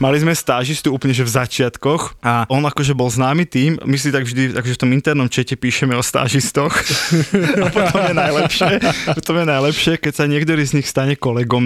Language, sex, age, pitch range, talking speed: Slovak, male, 20-39, 130-170 Hz, 180 wpm